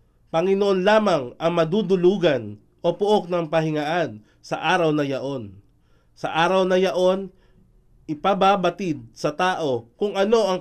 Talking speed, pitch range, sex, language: 125 wpm, 160-210 Hz, male, Filipino